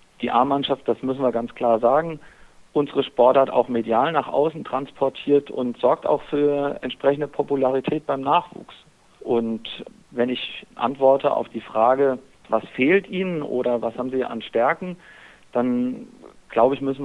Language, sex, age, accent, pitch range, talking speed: German, male, 50-69, German, 125-145 Hz, 150 wpm